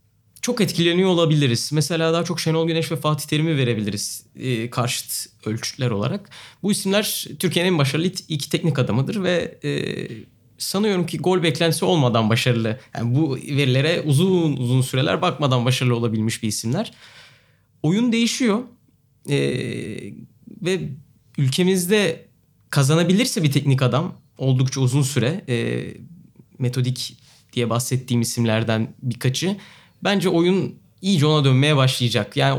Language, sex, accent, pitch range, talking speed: Turkish, male, native, 125-170 Hz, 120 wpm